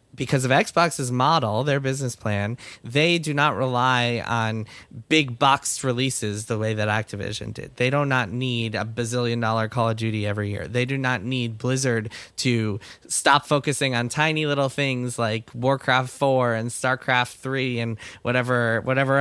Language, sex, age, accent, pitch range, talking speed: English, male, 20-39, American, 110-135 Hz, 165 wpm